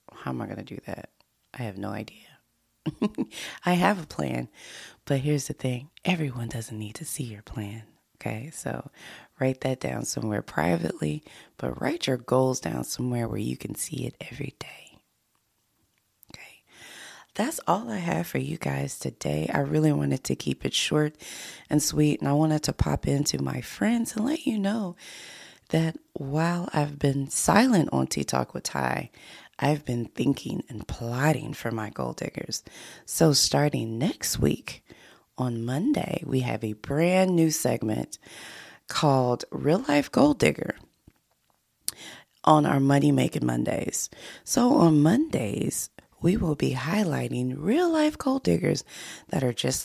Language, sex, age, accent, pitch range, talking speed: English, female, 20-39, American, 115-160 Hz, 160 wpm